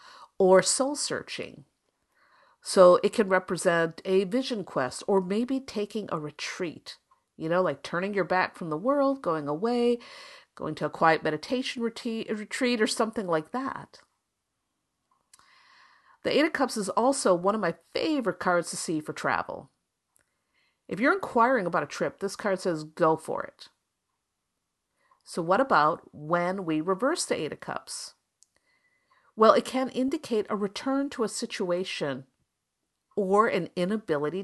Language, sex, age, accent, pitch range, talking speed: English, female, 50-69, American, 180-250 Hz, 150 wpm